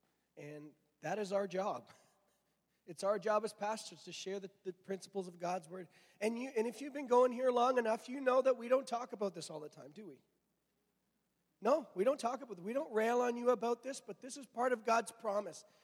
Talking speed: 230 wpm